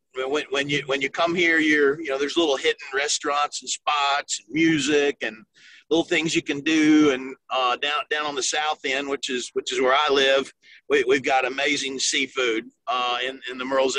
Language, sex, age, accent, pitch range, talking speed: English, male, 50-69, American, 135-180 Hz, 210 wpm